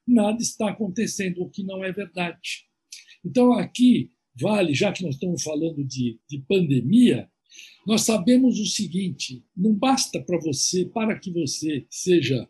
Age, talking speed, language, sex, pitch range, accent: 60-79, 150 wpm, Portuguese, male, 165-230 Hz, Brazilian